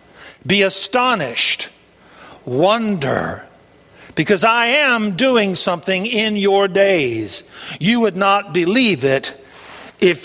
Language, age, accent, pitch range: English, 60-79, American, 180-240 Hz